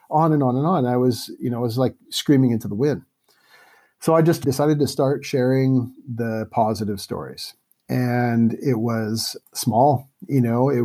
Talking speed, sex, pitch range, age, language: 185 wpm, male, 110-130 Hz, 50-69, English